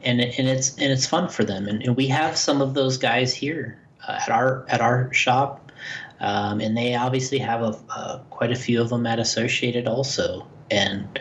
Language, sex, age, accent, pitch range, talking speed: English, male, 30-49, American, 110-140 Hz, 215 wpm